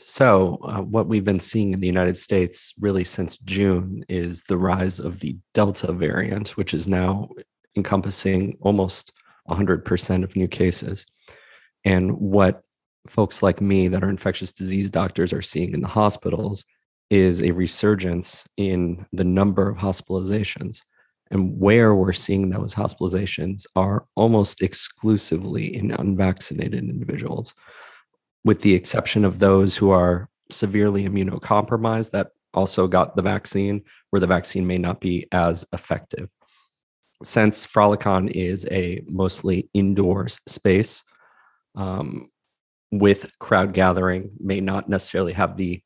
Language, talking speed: English, 135 wpm